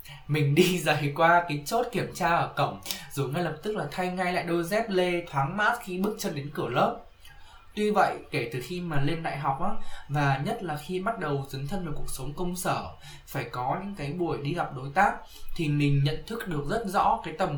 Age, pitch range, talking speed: 10-29, 140-180 Hz, 240 wpm